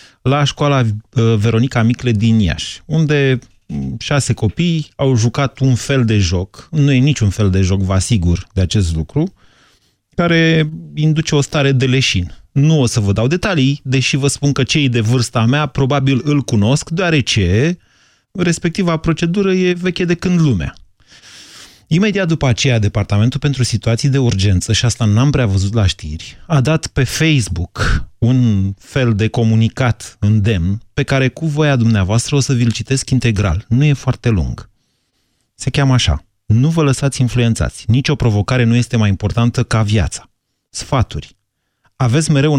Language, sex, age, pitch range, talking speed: Romanian, male, 30-49, 110-140 Hz, 160 wpm